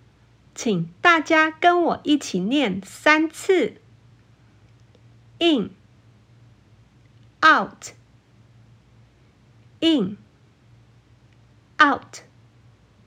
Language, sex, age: Chinese, female, 50-69